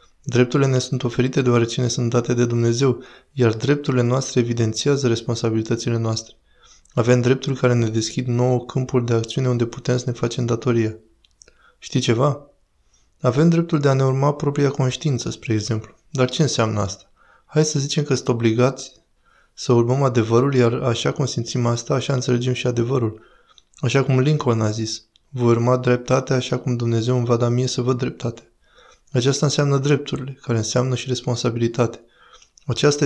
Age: 20-39